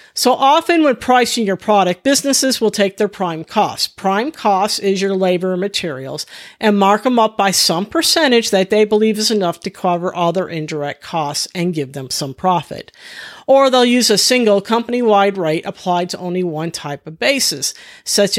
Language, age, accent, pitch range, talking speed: English, 50-69, American, 170-220 Hz, 185 wpm